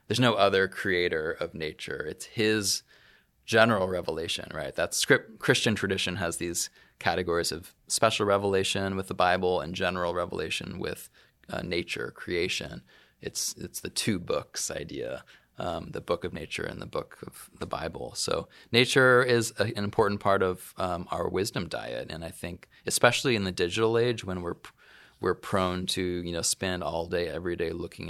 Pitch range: 90-110 Hz